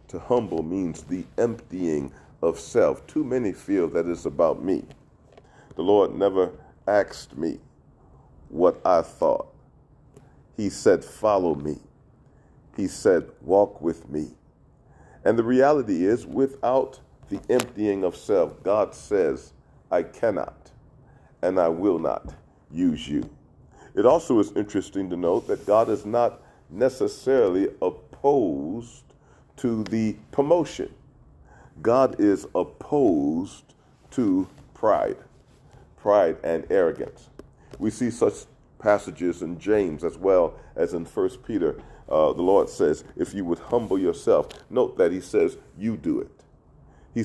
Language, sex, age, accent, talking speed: English, male, 40-59, American, 130 wpm